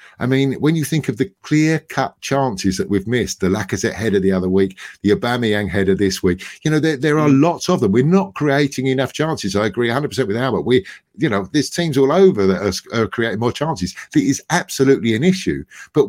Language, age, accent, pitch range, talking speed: English, 50-69, British, 110-150 Hz, 225 wpm